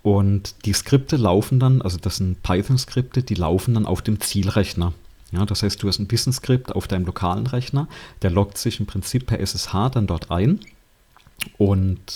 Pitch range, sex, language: 95-115 Hz, male, German